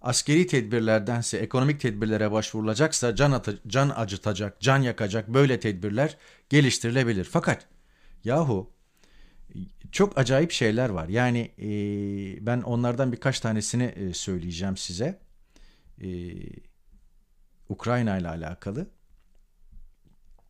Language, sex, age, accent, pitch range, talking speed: Turkish, male, 50-69, native, 100-135 Hz, 95 wpm